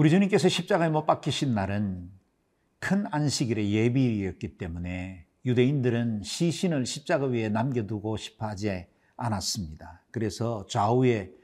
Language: Korean